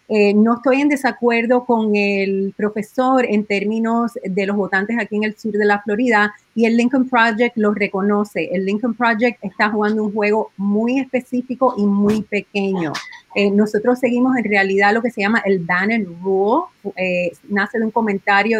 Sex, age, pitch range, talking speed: female, 30-49, 195-230 Hz, 175 wpm